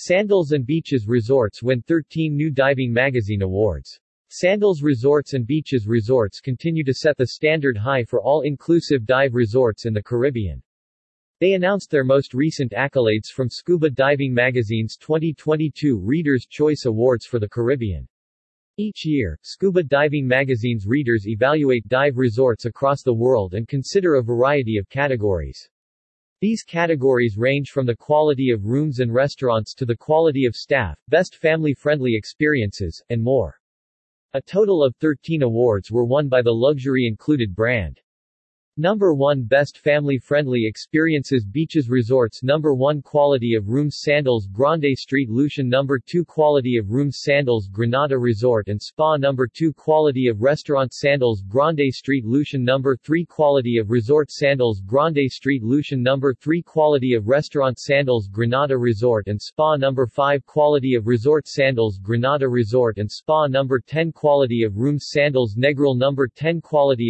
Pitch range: 120-150 Hz